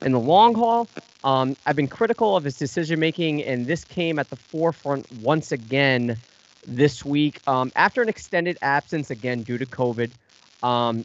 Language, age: English, 30-49